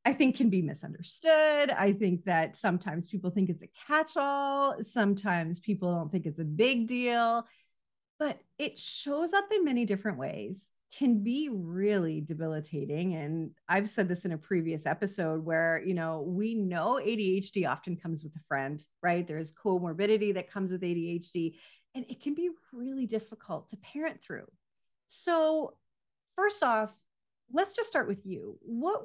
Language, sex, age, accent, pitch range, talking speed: English, female, 30-49, American, 175-245 Hz, 160 wpm